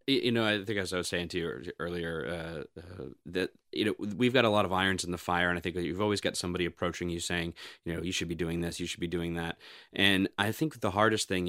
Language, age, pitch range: English, 30-49, 85-100 Hz